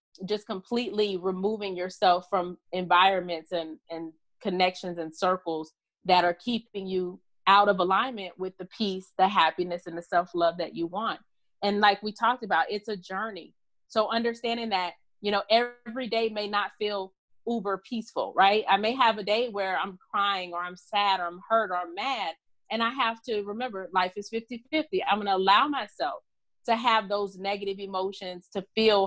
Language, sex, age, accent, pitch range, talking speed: English, female, 30-49, American, 180-215 Hz, 180 wpm